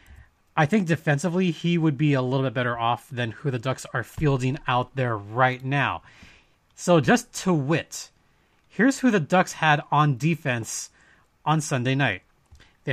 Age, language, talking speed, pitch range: 30-49, English, 165 wpm, 125-165 Hz